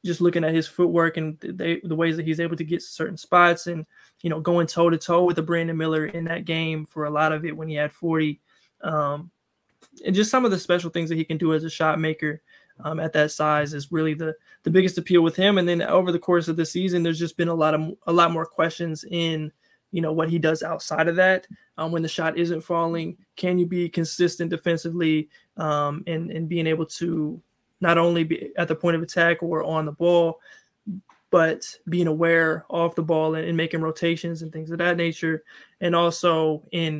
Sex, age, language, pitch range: male, 20-39, English, 160-170 Hz